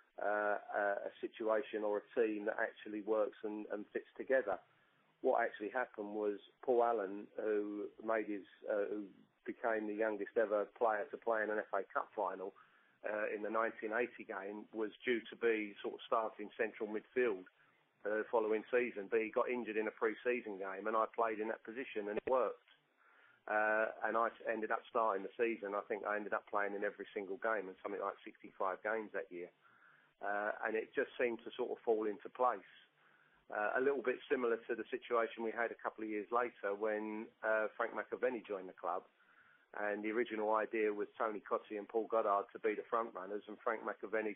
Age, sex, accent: 40-59, male, British